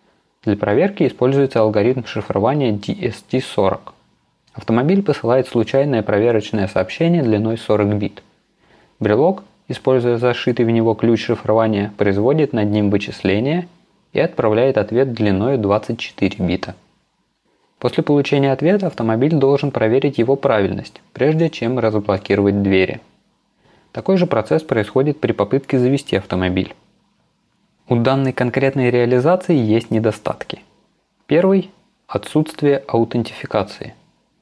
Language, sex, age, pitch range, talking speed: Russian, male, 20-39, 105-140 Hz, 105 wpm